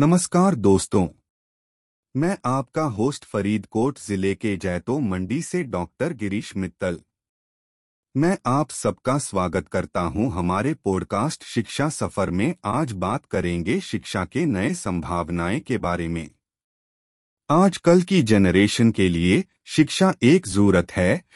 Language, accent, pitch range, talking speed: Hindi, native, 90-145 Hz, 130 wpm